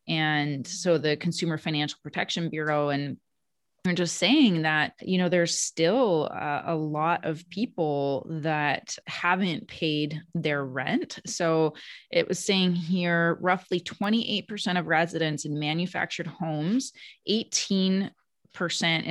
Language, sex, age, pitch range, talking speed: English, female, 20-39, 150-180 Hz, 120 wpm